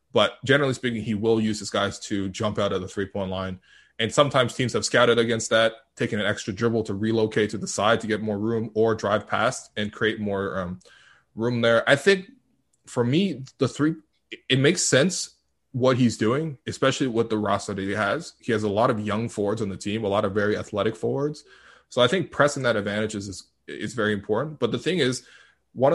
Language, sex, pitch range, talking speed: English, male, 105-125 Hz, 215 wpm